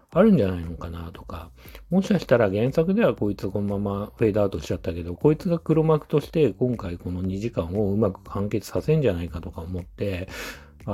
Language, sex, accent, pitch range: Japanese, male, native, 90-125 Hz